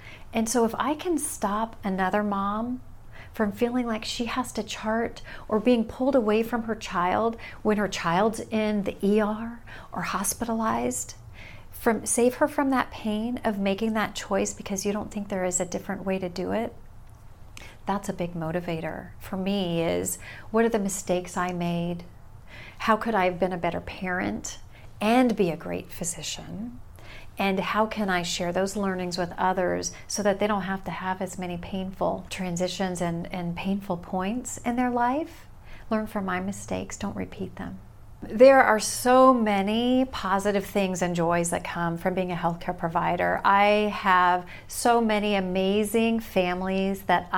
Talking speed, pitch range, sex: 170 wpm, 175-215 Hz, female